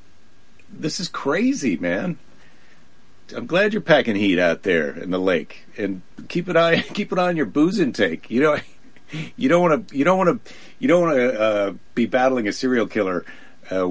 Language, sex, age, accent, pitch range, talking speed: English, male, 50-69, American, 90-140 Hz, 195 wpm